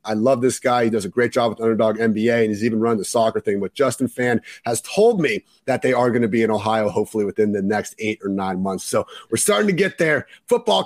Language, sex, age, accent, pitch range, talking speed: English, male, 30-49, American, 115-145 Hz, 265 wpm